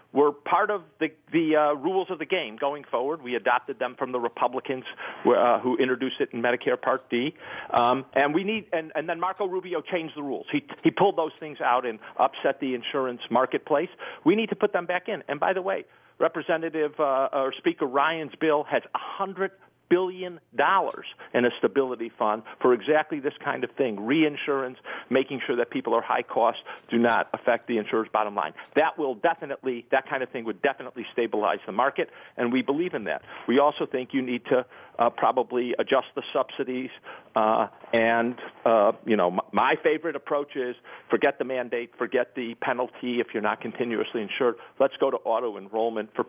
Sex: male